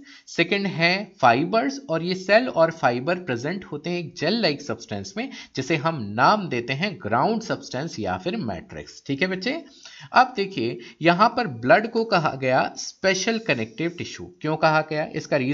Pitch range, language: 130-195 Hz, Hindi